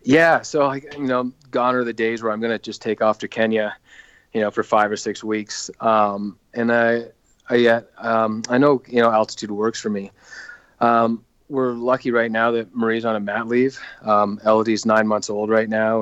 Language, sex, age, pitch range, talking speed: English, male, 30-49, 105-115 Hz, 215 wpm